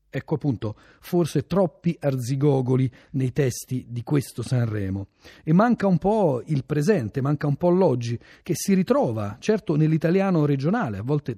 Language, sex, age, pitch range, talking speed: Italian, male, 40-59, 110-160 Hz, 150 wpm